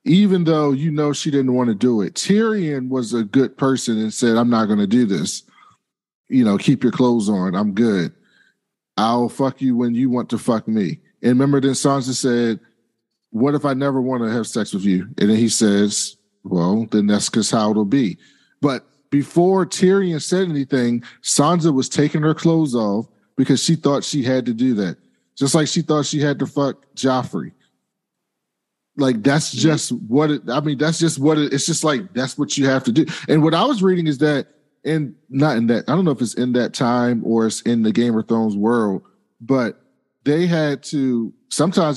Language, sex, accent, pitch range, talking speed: English, male, American, 115-150 Hz, 205 wpm